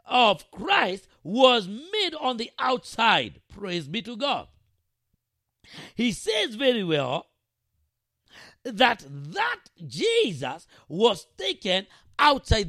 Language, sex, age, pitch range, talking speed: English, male, 50-69, 210-300 Hz, 100 wpm